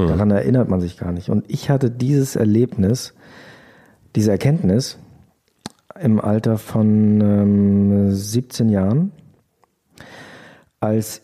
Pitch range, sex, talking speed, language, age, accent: 95-115 Hz, male, 105 wpm, German, 40-59, German